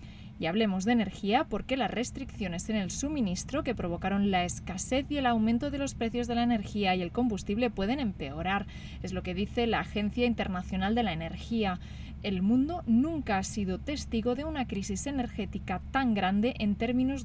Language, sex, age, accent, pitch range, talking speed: Spanish, female, 20-39, Spanish, 195-240 Hz, 180 wpm